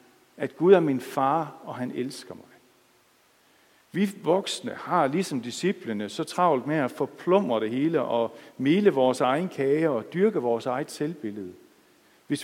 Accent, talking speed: native, 155 wpm